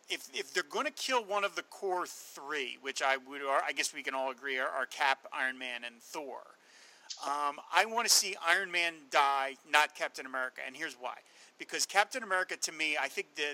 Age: 40-59